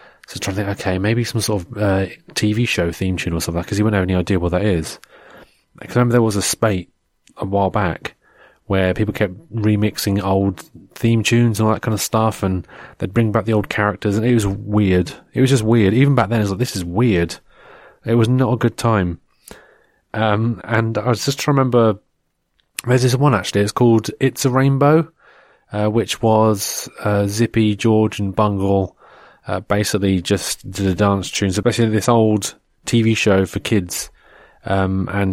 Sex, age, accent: male, 30-49, British